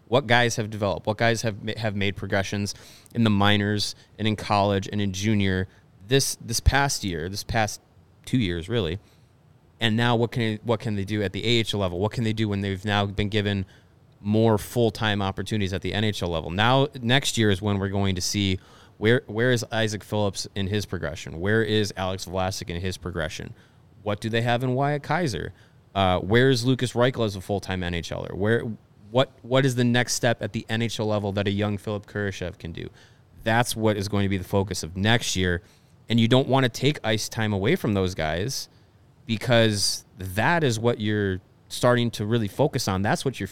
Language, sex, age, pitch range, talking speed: English, male, 30-49, 100-120 Hz, 210 wpm